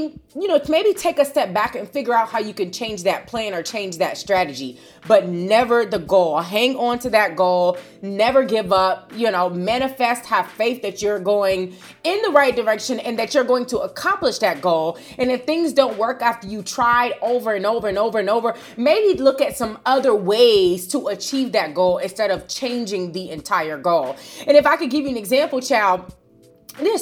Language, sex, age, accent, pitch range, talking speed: English, female, 30-49, American, 195-265 Hz, 205 wpm